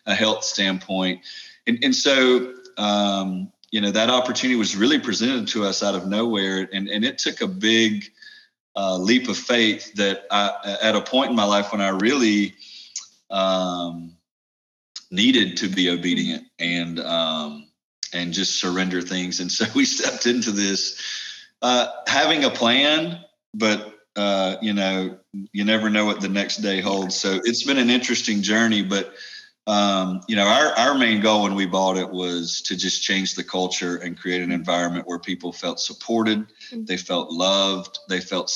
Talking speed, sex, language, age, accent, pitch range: 170 wpm, male, English, 30-49, American, 95-110 Hz